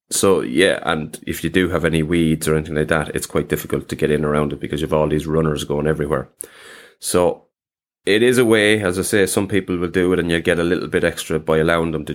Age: 20-39